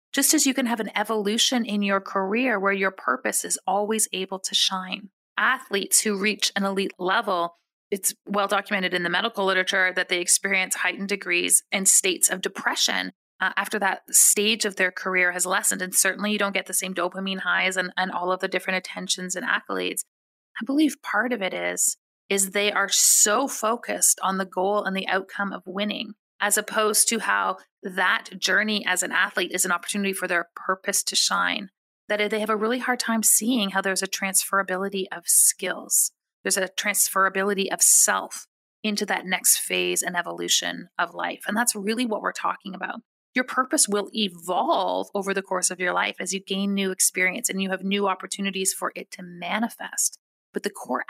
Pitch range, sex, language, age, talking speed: 185-210 Hz, female, English, 30-49, 195 wpm